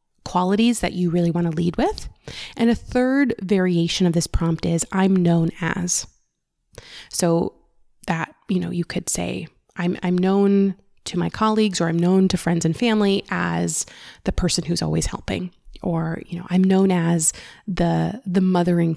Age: 20-39